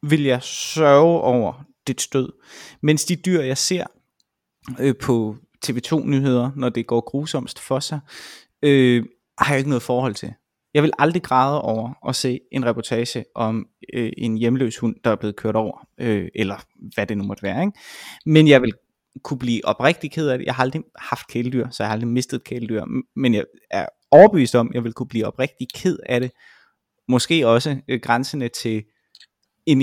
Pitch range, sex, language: 115-145 Hz, male, Danish